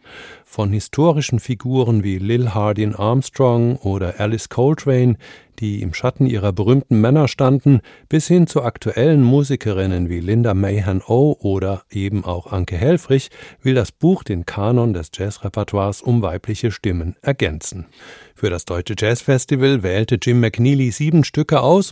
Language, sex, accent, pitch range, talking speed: German, male, German, 95-130 Hz, 145 wpm